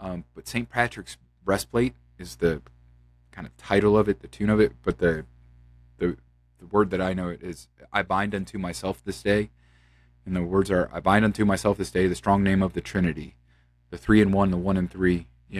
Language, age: English, 30-49